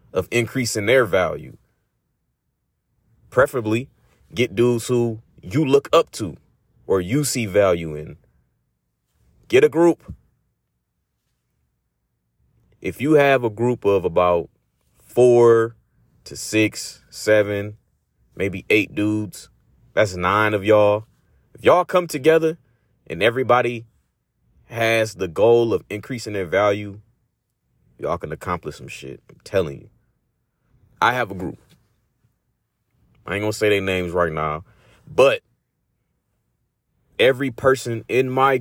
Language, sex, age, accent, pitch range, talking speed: English, male, 30-49, American, 100-125 Hz, 120 wpm